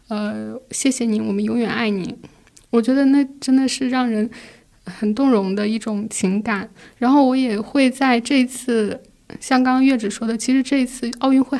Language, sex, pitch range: Chinese, female, 225-255 Hz